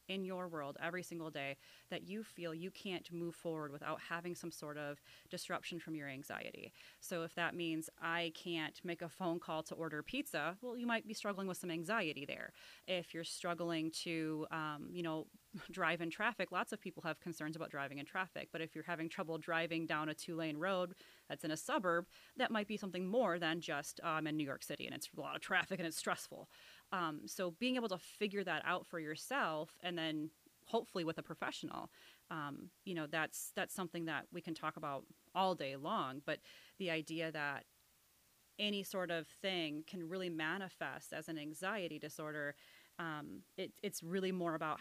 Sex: female